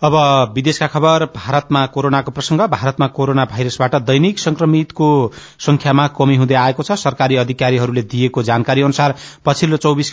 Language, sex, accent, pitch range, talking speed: English, male, Indian, 130-155 Hz, 140 wpm